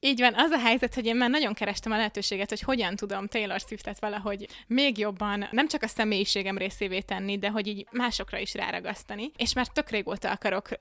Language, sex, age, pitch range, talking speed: Hungarian, female, 20-39, 200-230 Hz, 205 wpm